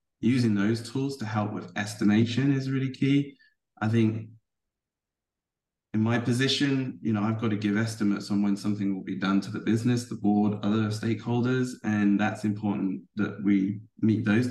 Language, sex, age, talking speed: English, male, 20-39, 175 wpm